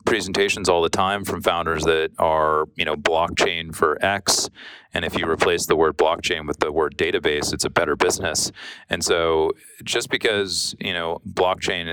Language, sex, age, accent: Chinese, male, 30-49, American